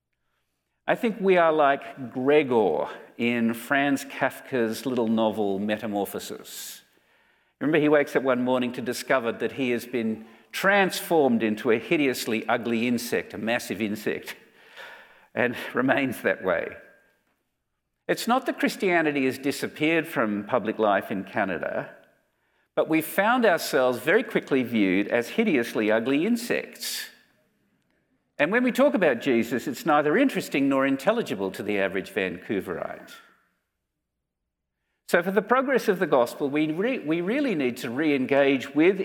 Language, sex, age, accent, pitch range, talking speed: English, male, 50-69, Australian, 115-165 Hz, 135 wpm